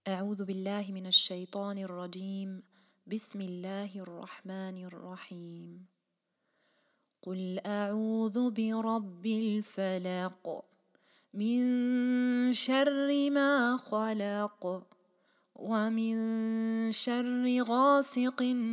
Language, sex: German, female